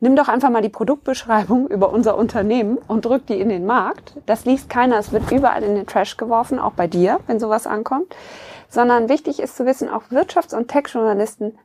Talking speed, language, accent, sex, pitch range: 205 wpm, German, German, female, 195-235 Hz